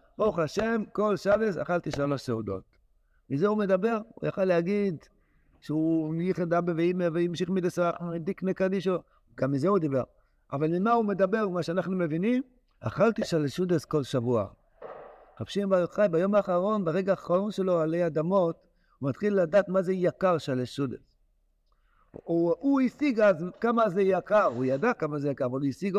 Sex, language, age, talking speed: male, Hebrew, 60-79, 155 wpm